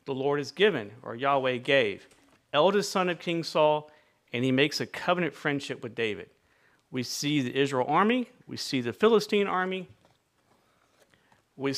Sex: male